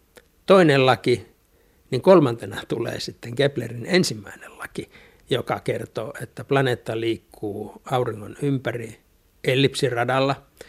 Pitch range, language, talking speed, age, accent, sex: 115-150 Hz, Finnish, 95 wpm, 60-79, native, male